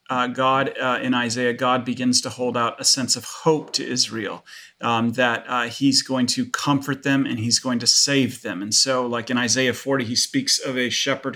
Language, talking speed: English, 215 wpm